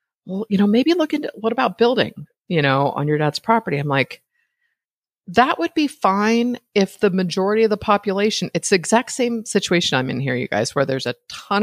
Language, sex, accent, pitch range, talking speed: English, female, American, 145-210 Hz, 205 wpm